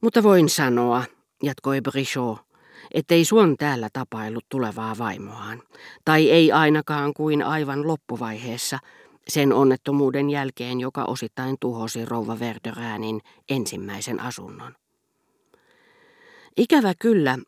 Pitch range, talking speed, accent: 125-160 Hz, 100 wpm, native